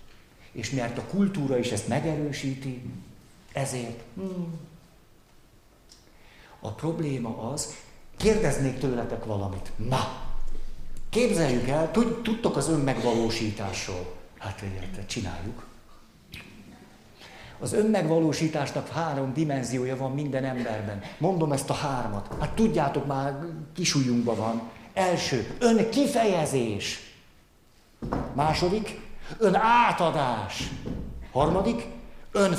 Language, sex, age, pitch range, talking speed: Hungarian, male, 50-69, 125-185 Hz, 85 wpm